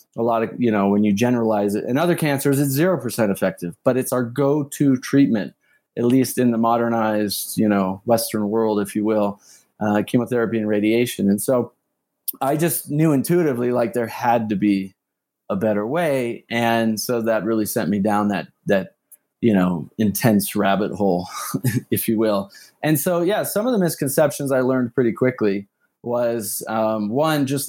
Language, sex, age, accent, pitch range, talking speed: English, male, 30-49, American, 110-135 Hz, 180 wpm